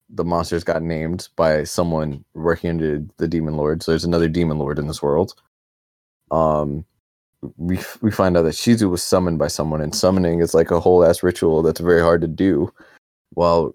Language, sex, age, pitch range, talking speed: English, male, 20-39, 75-90 Hz, 190 wpm